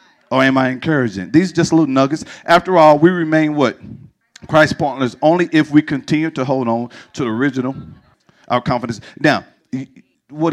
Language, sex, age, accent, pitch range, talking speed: English, male, 50-69, American, 130-165 Hz, 170 wpm